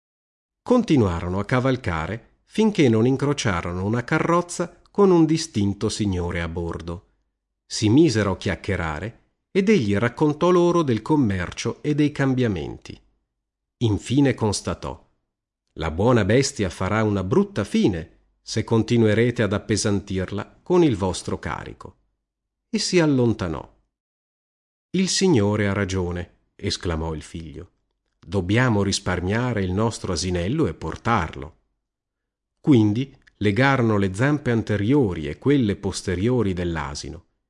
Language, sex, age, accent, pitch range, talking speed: Italian, male, 40-59, native, 90-135 Hz, 110 wpm